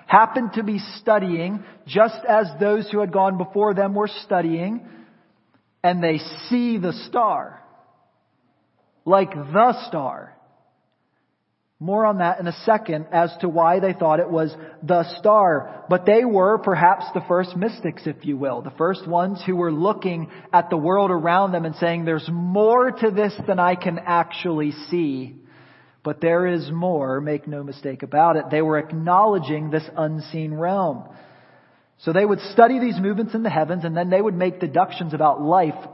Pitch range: 155-205 Hz